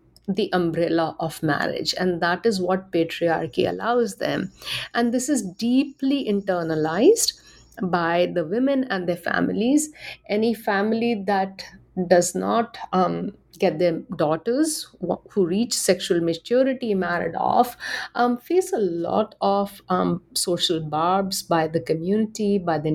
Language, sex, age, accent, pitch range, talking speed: English, female, 60-79, Indian, 180-240 Hz, 130 wpm